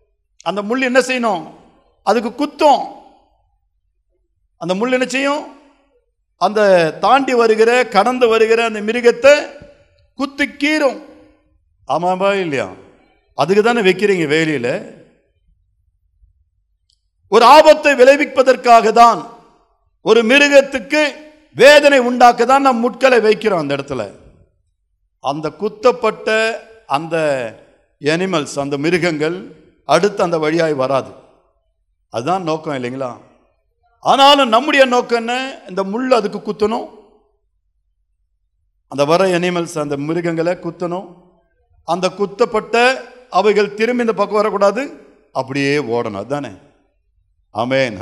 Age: 50-69